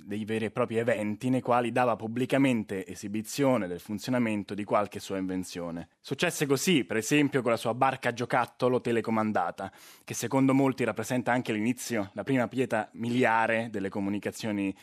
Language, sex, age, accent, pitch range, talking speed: Italian, male, 20-39, native, 100-125 Hz, 160 wpm